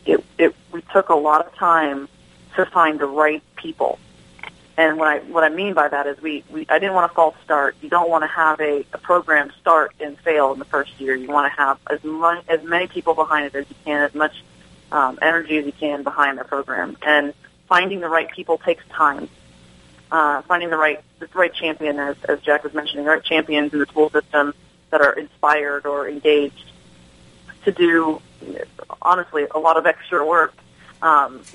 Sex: female